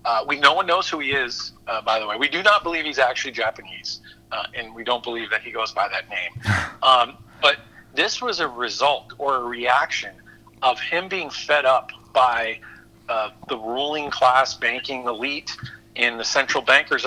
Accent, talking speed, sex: American, 195 wpm, male